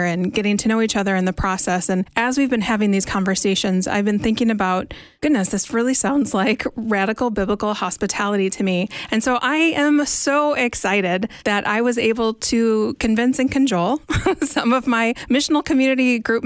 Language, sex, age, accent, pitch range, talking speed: English, female, 30-49, American, 195-245 Hz, 180 wpm